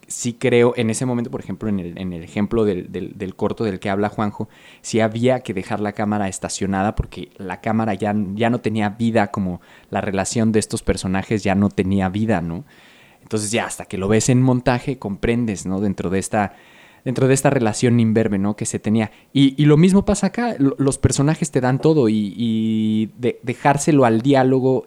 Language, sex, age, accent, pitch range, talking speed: Spanish, male, 20-39, Mexican, 105-125 Hz, 195 wpm